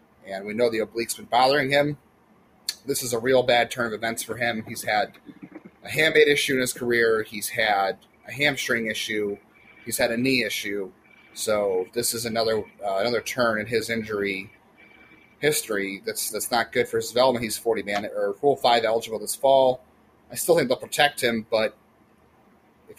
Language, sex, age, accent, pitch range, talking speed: English, male, 30-49, American, 110-135 Hz, 185 wpm